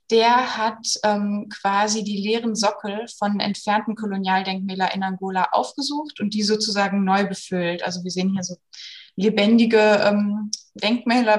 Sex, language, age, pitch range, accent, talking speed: female, German, 20-39, 185-215 Hz, German, 135 wpm